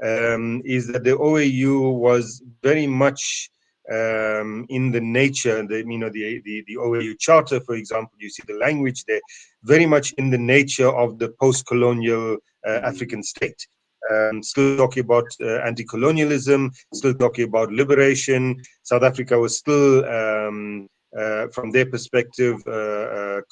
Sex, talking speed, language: male, 150 wpm, English